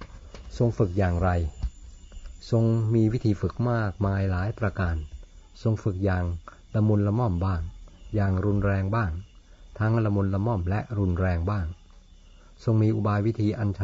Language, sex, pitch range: Thai, male, 90-105 Hz